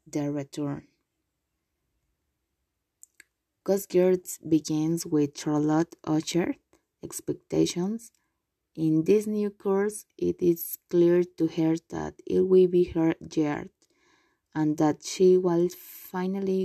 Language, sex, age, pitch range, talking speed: English, female, 20-39, 160-190 Hz, 100 wpm